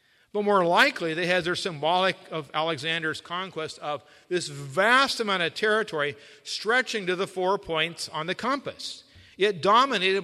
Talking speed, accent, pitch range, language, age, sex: 150 wpm, American, 130-190 Hz, English, 50-69, male